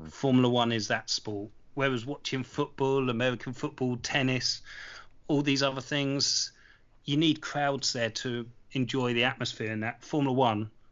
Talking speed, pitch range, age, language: 150 wpm, 115-135 Hz, 30-49, English